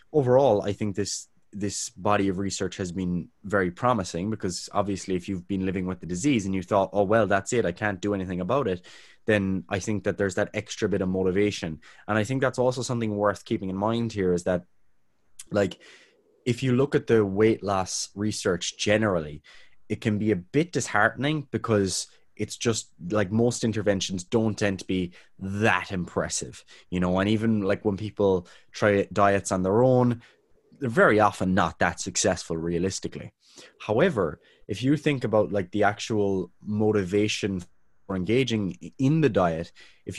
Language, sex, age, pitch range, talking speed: English, male, 20-39, 95-115 Hz, 180 wpm